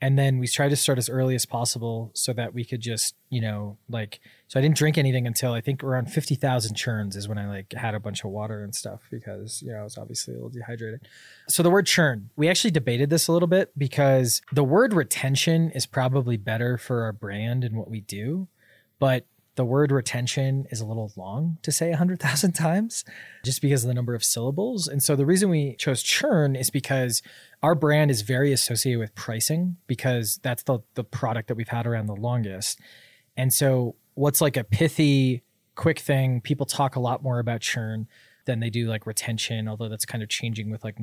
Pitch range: 115-140 Hz